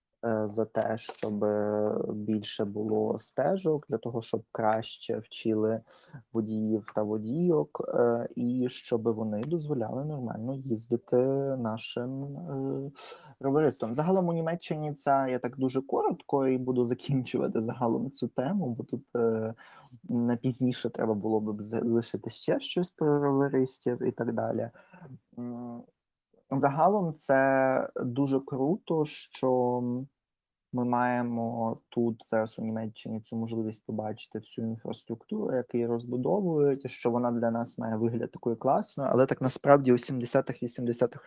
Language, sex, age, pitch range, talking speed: Ukrainian, male, 20-39, 115-135 Hz, 120 wpm